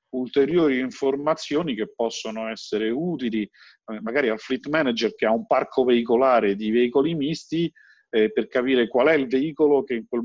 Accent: Italian